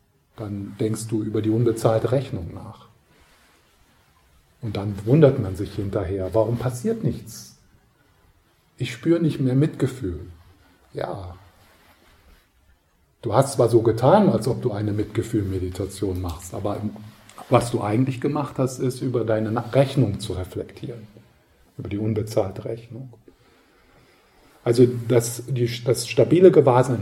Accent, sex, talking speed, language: German, male, 120 wpm, German